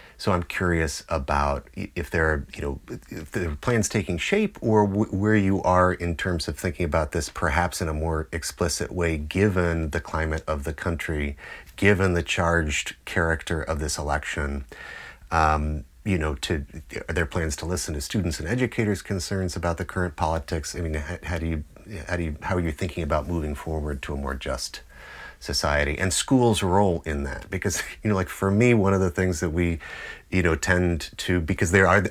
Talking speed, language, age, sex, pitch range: 200 wpm, English, 30-49, male, 80-95 Hz